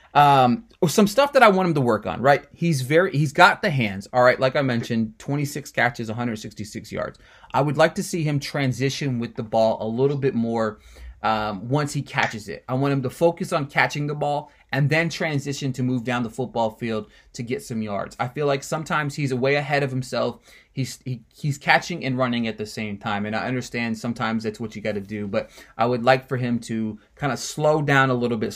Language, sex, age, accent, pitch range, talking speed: English, male, 30-49, American, 115-145 Hz, 235 wpm